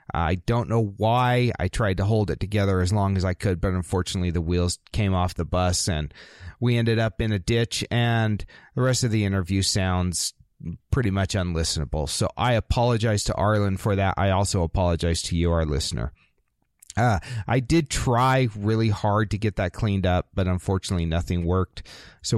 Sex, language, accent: male, English, American